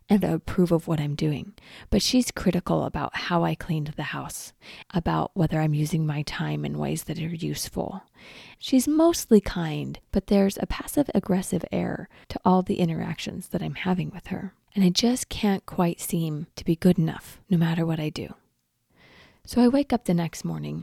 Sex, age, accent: female, 30-49, American